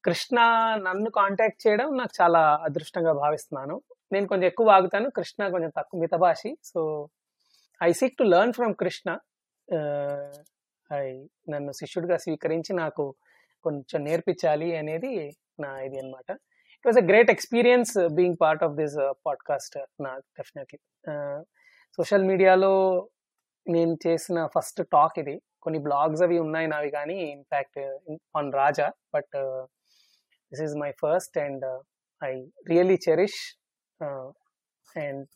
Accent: native